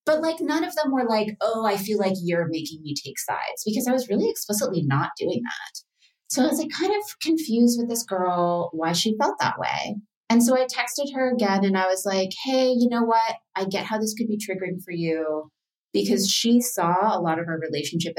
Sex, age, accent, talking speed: female, 30-49, American, 230 wpm